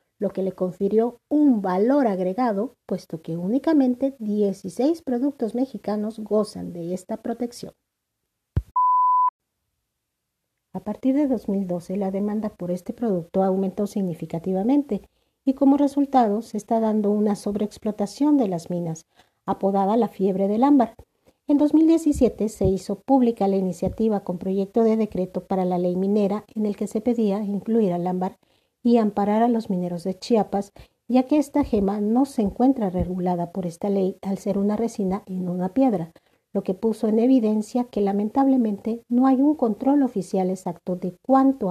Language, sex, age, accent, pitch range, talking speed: Spanish, female, 50-69, American, 190-245 Hz, 155 wpm